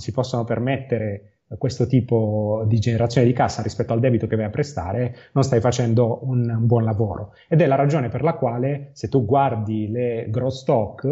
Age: 30-49